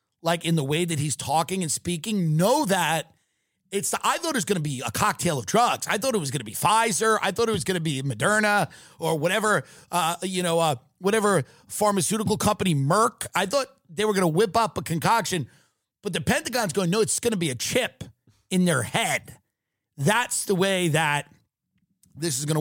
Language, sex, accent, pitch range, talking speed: English, male, American, 150-195 Hz, 210 wpm